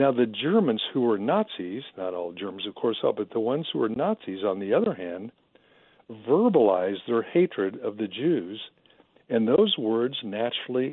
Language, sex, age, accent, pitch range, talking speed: English, male, 60-79, American, 120-150 Hz, 170 wpm